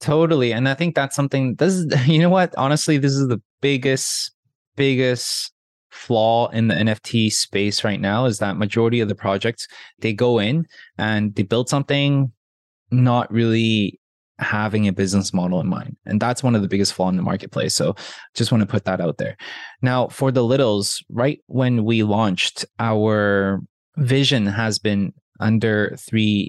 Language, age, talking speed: English, 20-39, 175 wpm